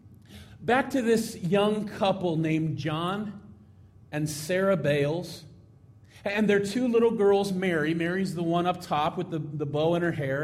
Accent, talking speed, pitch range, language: American, 160 wpm, 125-180 Hz, English